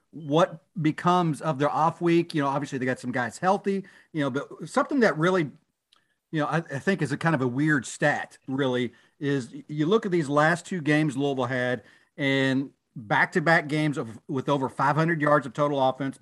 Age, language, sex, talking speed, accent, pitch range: 40-59, English, male, 200 wpm, American, 140-165 Hz